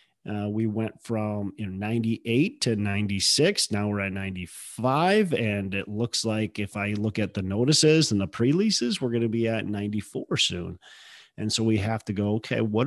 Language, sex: English, male